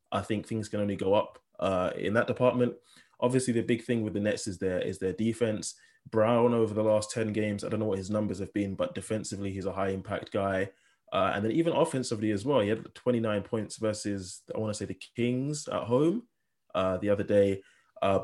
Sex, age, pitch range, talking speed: male, 20-39, 100-115 Hz, 225 wpm